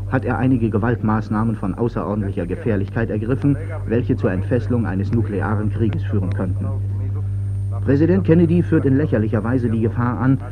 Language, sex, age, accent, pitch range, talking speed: German, male, 50-69, German, 100-125 Hz, 145 wpm